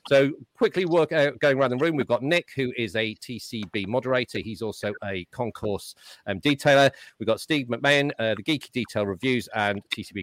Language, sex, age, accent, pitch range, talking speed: English, male, 40-59, British, 110-140 Hz, 195 wpm